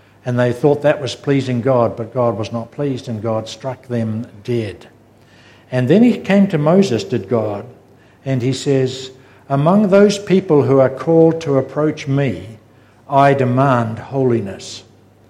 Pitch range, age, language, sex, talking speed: 115-145 Hz, 60-79, English, male, 155 wpm